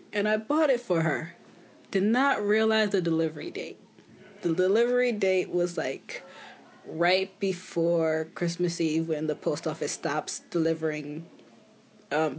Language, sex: English, female